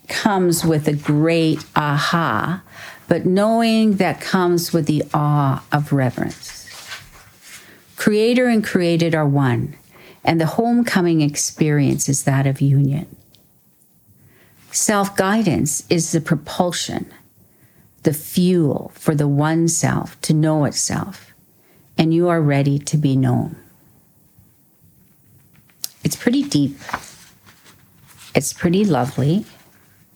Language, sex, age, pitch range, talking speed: English, female, 50-69, 150-180 Hz, 105 wpm